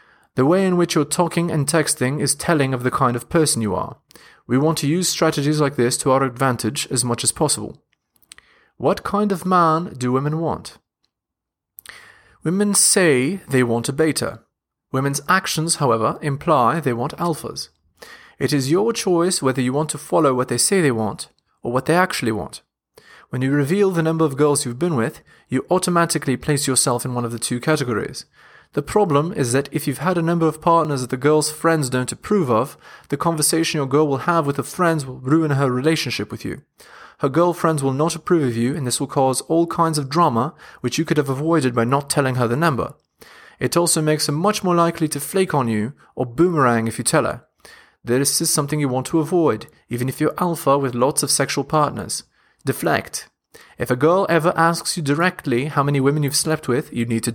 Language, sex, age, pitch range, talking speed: English, male, 30-49, 130-165 Hz, 210 wpm